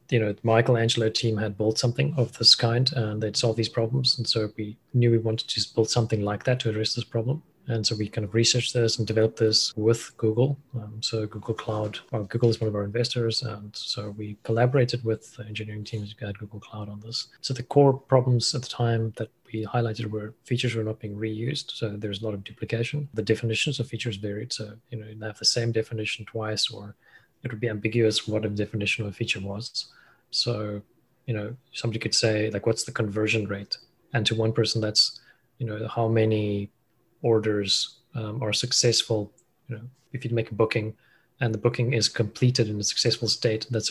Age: 30-49